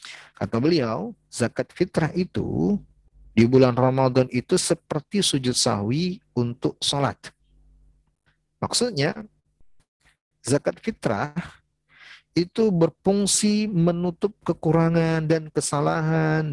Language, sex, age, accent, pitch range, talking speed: Indonesian, male, 40-59, native, 120-165 Hz, 85 wpm